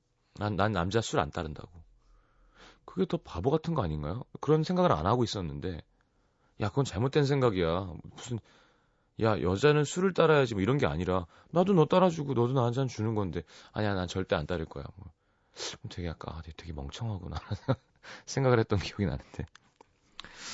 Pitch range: 90-135 Hz